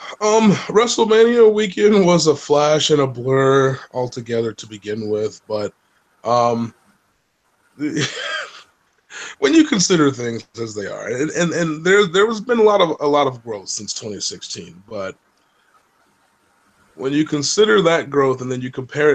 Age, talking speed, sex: 20-39, 145 wpm, male